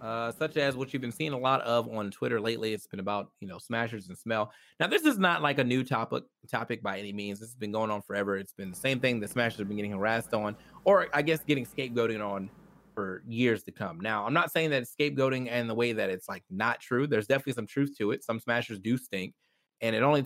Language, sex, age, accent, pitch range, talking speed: English, male, 30-49, American, 105-135 Hz, 260 wpm